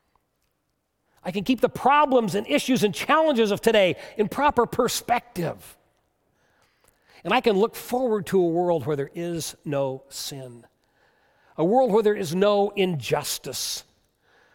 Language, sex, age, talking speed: English, male, 40-59, 140 wpm